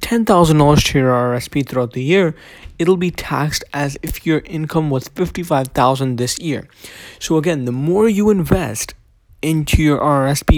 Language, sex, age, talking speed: English, male, 20-39, 155 wpm